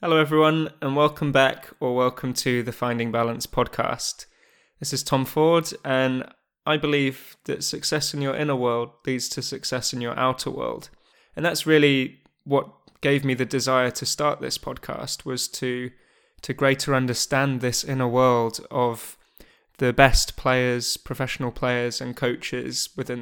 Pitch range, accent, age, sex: 125-140 Hz, British, 20-39, male